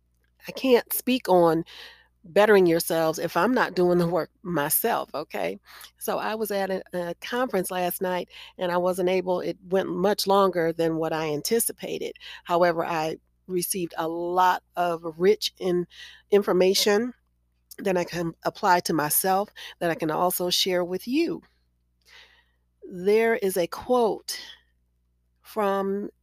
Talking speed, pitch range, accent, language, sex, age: 140 wpm, 160-200 Hz, American, English, female, 40-59